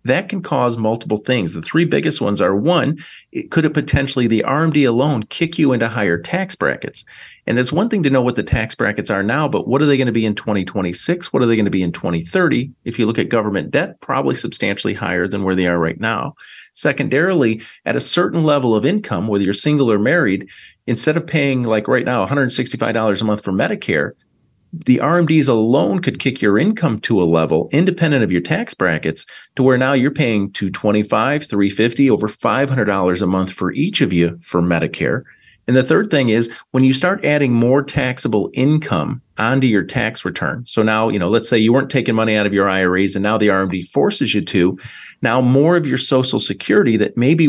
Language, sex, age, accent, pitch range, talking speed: English, male, 40-59, American, 100-140 Hz, 210 wpm